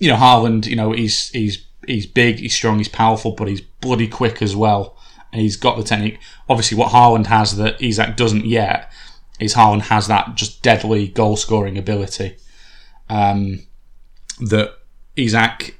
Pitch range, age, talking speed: 105-115 Hz, 20-39, 165 wpm